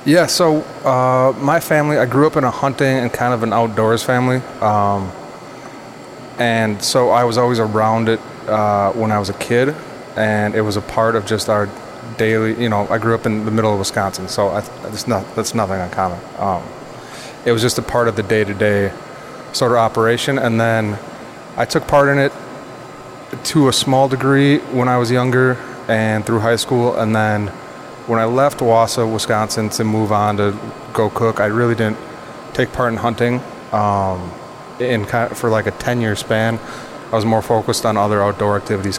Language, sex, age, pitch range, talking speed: English, male, 30-49, 100-120 Hz, 190 wpm